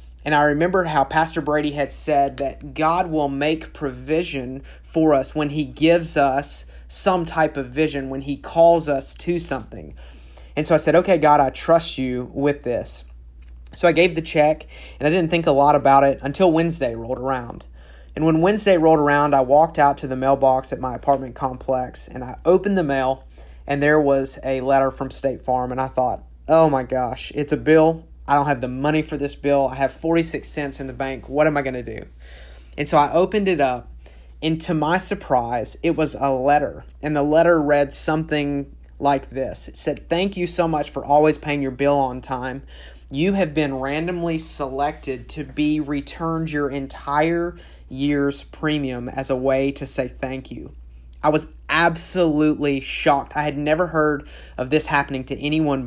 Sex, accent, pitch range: male, American, 130-155 Hz